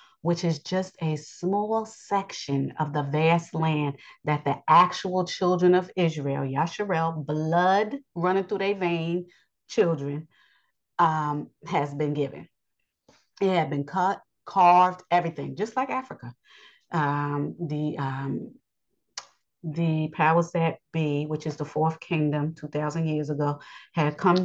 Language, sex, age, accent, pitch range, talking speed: English, female, 40-59, American, 145-170 Hz, 130 wpm